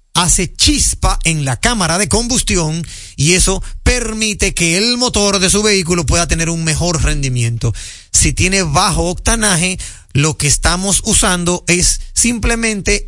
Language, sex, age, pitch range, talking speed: Spanish, male, 30-49, 145-210 Hz, 140 wpm